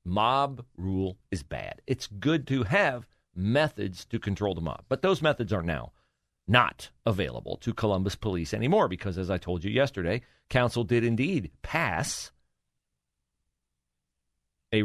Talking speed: 140 wpm